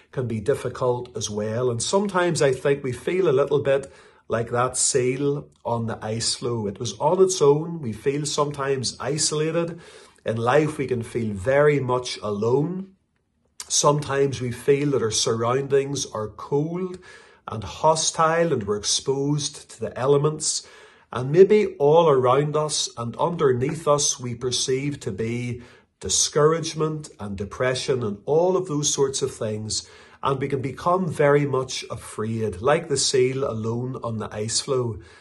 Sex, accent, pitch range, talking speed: male, Irish, 120-150 Hz, 155 wpm